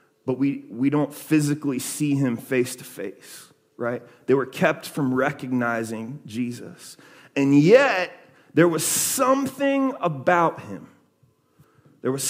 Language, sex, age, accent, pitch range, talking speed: English, male, 30-49, American, 140-180 Hz, 125 wpm